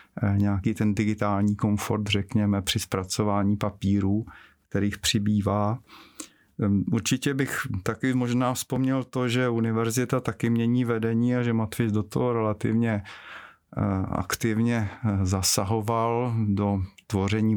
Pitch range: 105-125 Hz